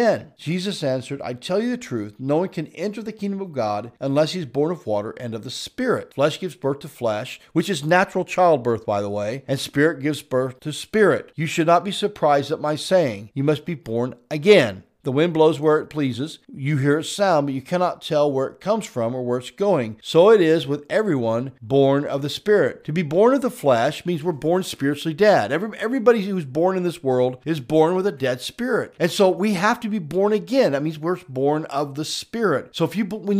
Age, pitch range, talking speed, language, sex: 50-69, 135-195 Hz, 230 wpm, English, male